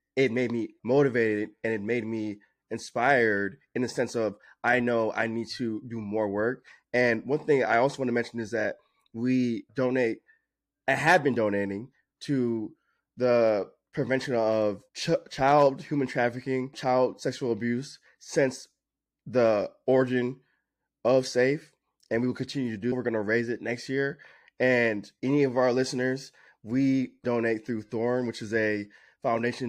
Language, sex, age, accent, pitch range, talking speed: English, male, 20-39, American, 110-130 Hz, 160 wpm